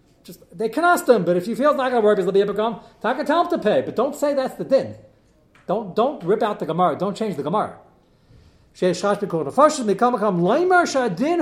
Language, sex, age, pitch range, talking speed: English, male, 40-59, 110-185 Hz, 210 wpm